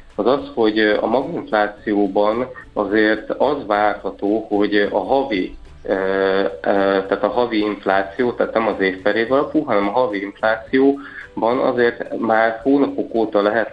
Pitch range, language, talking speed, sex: 100-110 Hz, Hungarian, 125 wpm, male